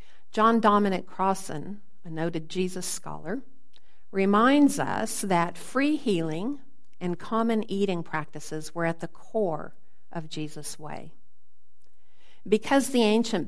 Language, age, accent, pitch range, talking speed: English, 50-69, American, 160-215 Hz, 115 wpm